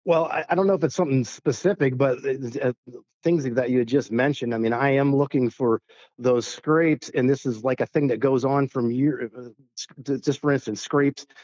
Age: 50-69